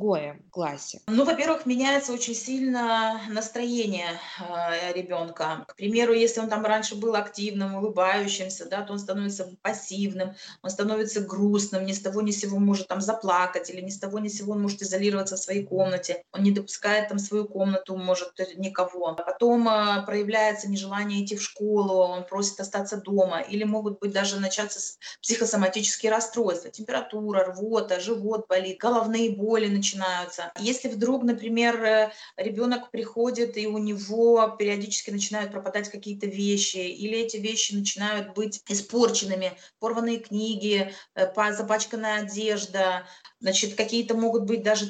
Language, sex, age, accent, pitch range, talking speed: Russian, female, 20-39, native, 195-225 Hz, 145 wpm